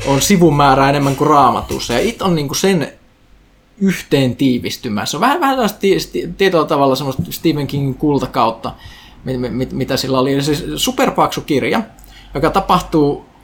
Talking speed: 145 wpm